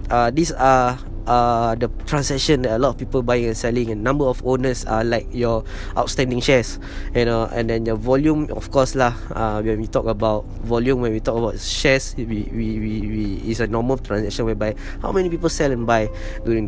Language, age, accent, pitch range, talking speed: English, 20-39, Malaysian, 110-145 Hz, 215 wpm